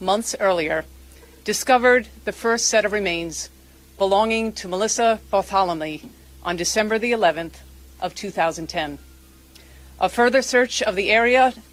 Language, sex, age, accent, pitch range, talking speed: English, female, 40-59, American, 150-215 Hz, 125 wpm